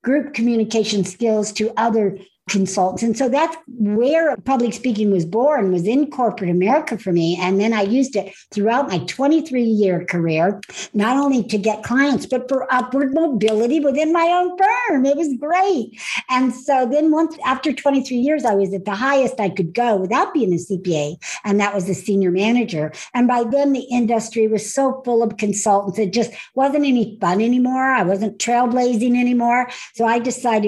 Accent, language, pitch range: American, English, 195-255 Hz